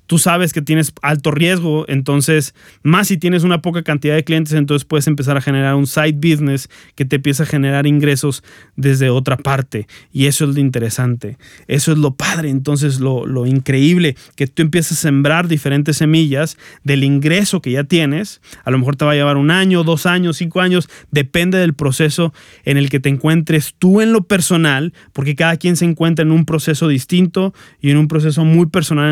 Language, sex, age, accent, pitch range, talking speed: Spanish, male, 30-49, Mexican, 140-170 Hz, 200 wpm